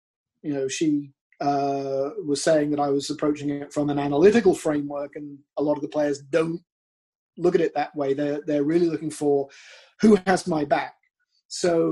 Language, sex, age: English, male, 30-49